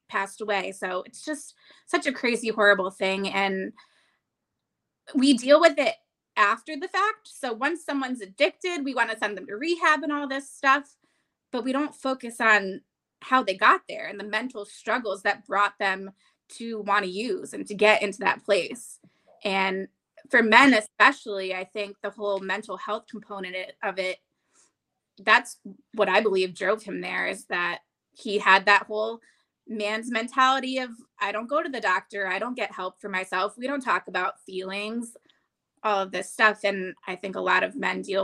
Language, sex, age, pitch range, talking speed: English, female, 20-39, 200-270 Hz, 185 wpm